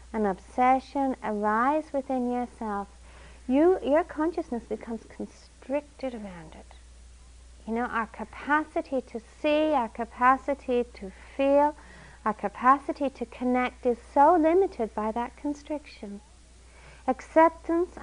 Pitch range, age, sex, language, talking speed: 205-270 Hz, 50-69, female, English, 110 wpm